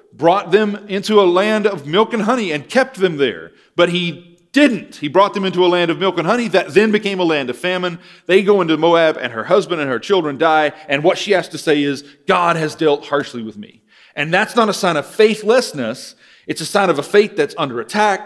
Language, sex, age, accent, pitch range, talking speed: English, male, 40-59, American, 140-200 Hz, 240 wpm